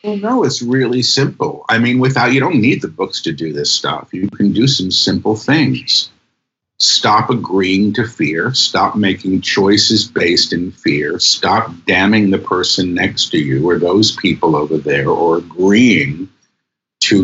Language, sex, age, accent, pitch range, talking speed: English, male, 50-69, American, 95-120 Hz, 165 wpm